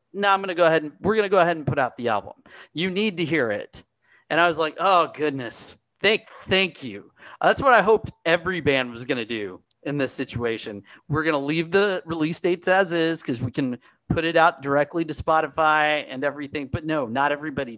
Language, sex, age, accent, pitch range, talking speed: English, male, 40-59, American, 140-170 Hz, 230 wpm